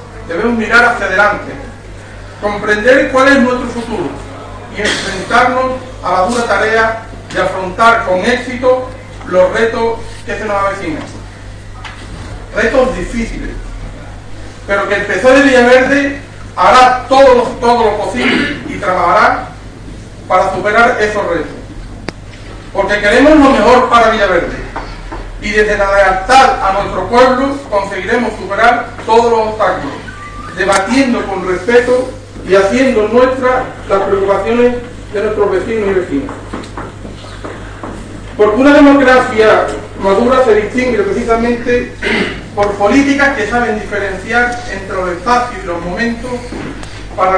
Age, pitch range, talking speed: 40-59, 185-245 Hz, 120 wpm